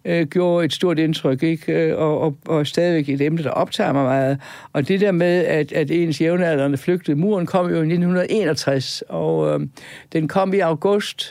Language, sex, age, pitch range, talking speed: Danish, male, 60-79, 145-175 Hz, 185 wpm